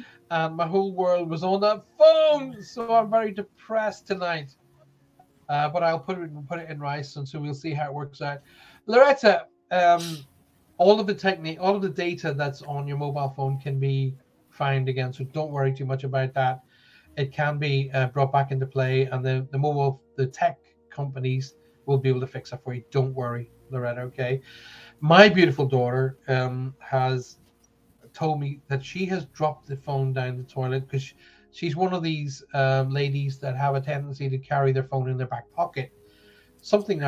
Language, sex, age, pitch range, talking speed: English, male, 30-49, 130-160 Hz, 195 wpm